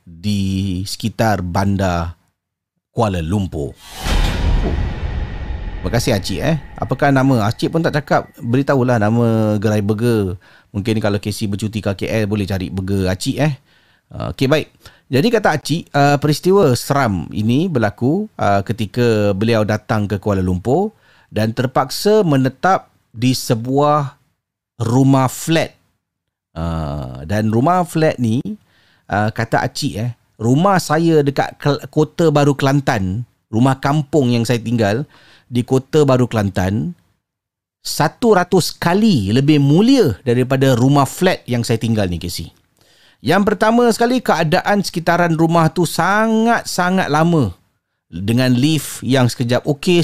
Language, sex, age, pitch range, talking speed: Malay, male, 40-59, 105-155 Hz, 125 wpm